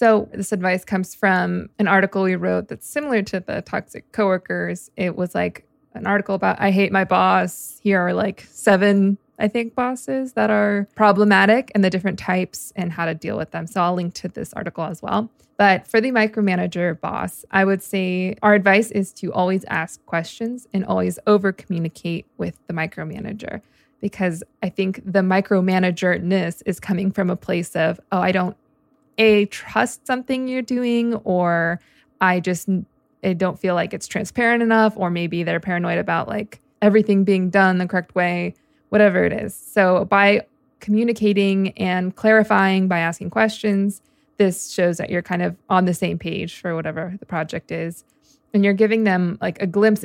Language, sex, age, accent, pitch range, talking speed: English, female, 20-39, American, 180-210 Hz, 180 wpm